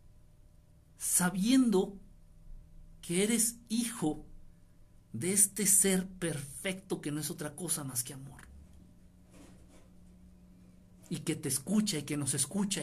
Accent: Mexican